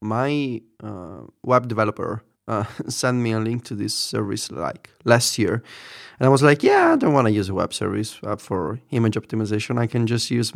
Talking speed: 205 wpm